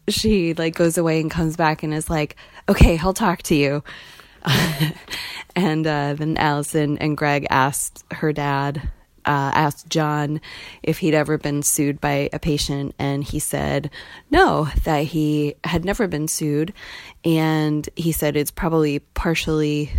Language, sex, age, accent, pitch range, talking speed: English, female, 20-39, American, 145-165 Hz, 155 wpm